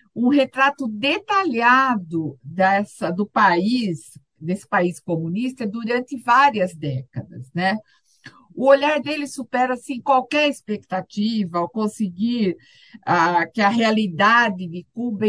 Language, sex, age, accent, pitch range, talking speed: Portuguese, female, 50-69, Brazilian, 185-250 Hz, 100 wpm